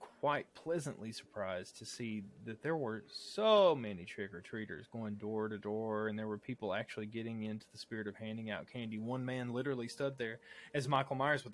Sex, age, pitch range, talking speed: male, 20-39, 110-145 Hz, 190 wpm